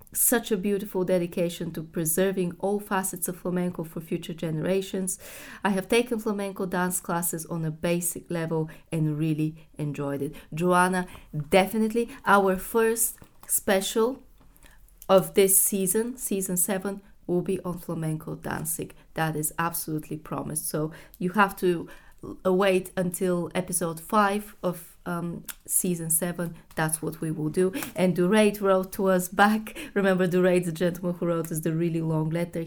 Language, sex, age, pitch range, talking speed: English, female, 20-39, 170-200 Hz, 145 wpm